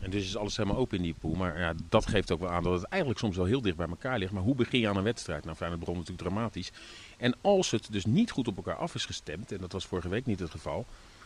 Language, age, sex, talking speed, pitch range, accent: Dutch, 40-59, male, 310 wpm, 90-115 Hz, Dutch